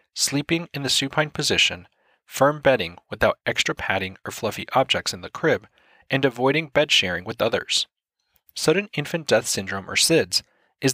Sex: male